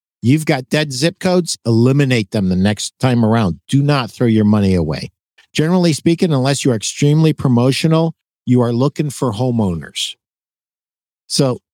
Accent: American